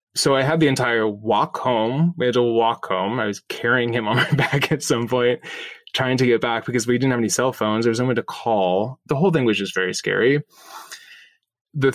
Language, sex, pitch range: English, male, 110-145 Hz